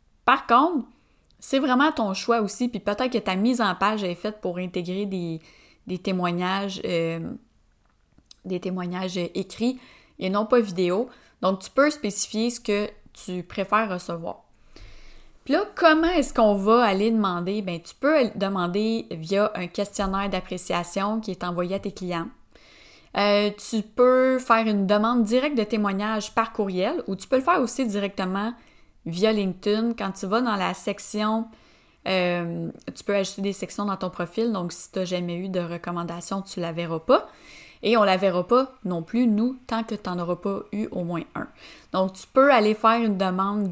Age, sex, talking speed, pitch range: 20-39, female, 185 wpm, 180-225 Hz